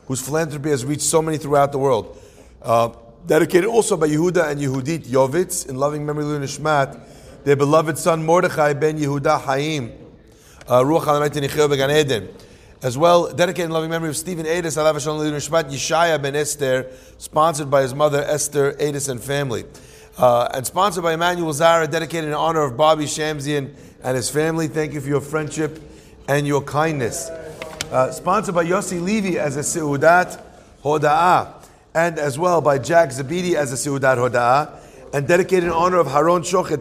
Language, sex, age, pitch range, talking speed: English, male, 30-49, 140-165 Hz, 170 wpm